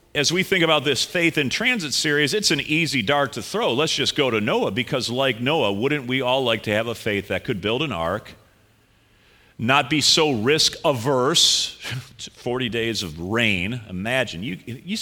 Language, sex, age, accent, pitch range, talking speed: English, male, 40-59, American, 110-145 Hz, 190 wpm